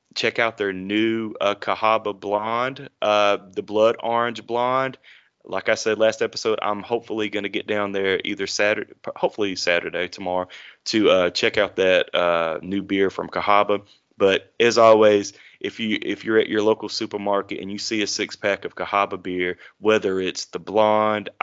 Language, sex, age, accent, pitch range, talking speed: English, male, 30-49, American, 95-110 Hz, 175 wpm